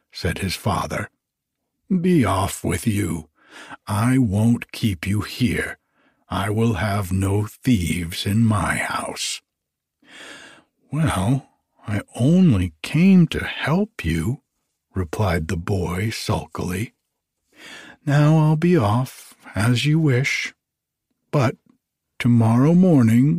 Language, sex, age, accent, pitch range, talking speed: English, male, 60-79, American, 105-150 Hz, 105 wpm